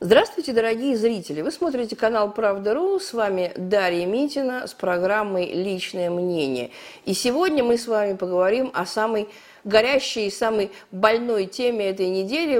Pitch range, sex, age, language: 180-245 Hz, female, 50-69, Russian